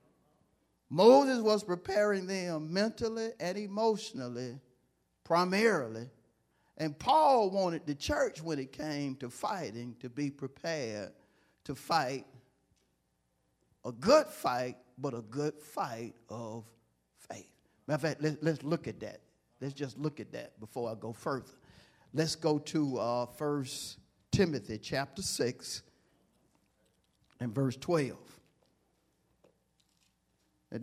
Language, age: English, 50-69